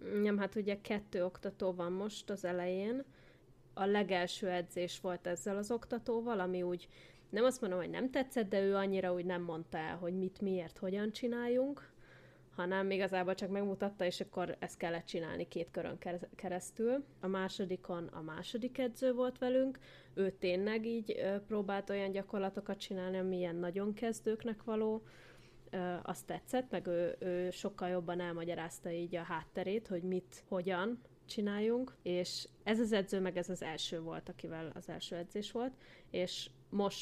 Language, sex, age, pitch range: Hungarian, female, 20-39, 180-205 Hz